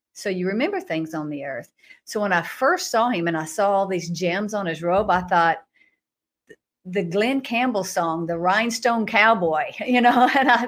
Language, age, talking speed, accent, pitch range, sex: English, 50-69, 195 wpm, American, 180-230 Hz, female